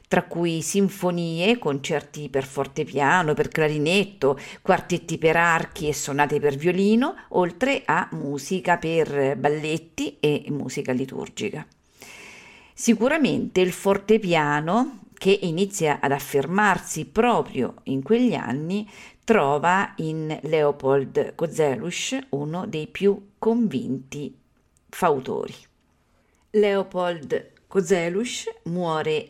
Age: 50-69